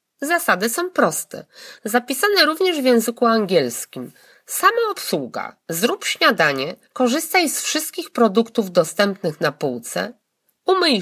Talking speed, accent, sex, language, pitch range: 110 wpm, native, female, Polish, 185-300 Hz